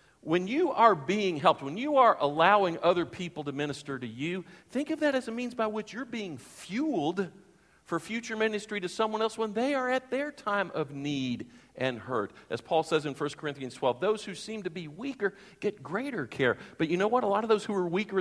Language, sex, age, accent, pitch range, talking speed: English, male, 50-69, American, 130-205 Hz, 225 wpm